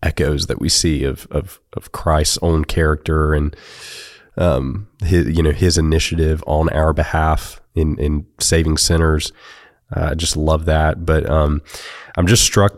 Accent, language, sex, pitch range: American, English, male, 75-90 Hz